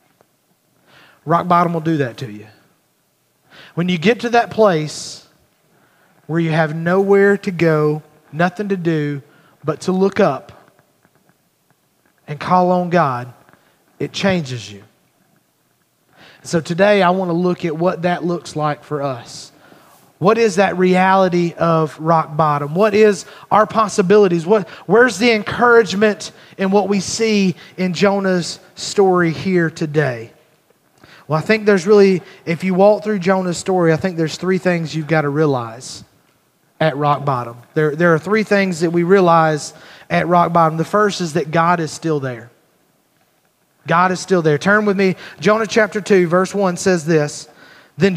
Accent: American